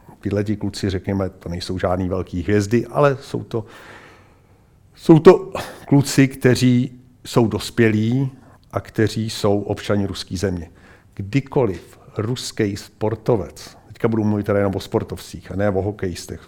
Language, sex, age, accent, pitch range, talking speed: Czech, male, 50-69, native, 95-120 Hz, 130 wpm